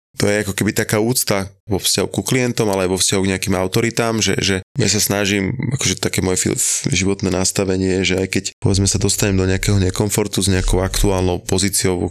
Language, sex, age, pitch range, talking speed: Slovak, male, 20-39, 90-100 Hz, 200 wpm